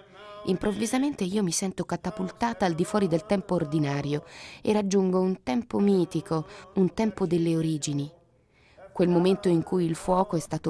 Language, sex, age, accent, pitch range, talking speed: Italian, female, 30-49, native, 165-210 Hz, 155 wpm